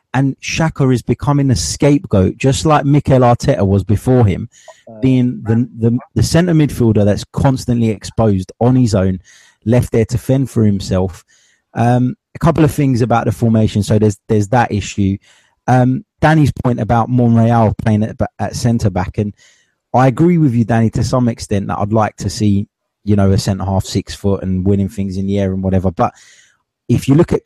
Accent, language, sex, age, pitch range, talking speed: British, English, male, 20-39, 105-125 Hz, 190 wpm